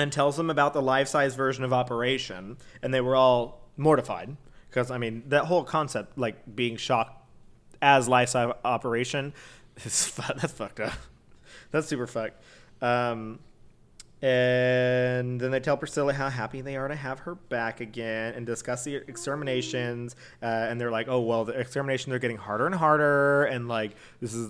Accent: American